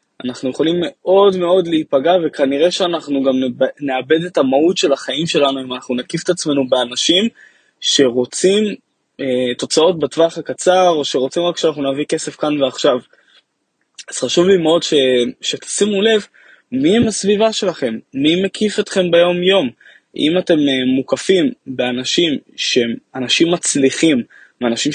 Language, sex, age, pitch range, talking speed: Hebrew, male, 20-39, 130-180 Hz, 135 wpm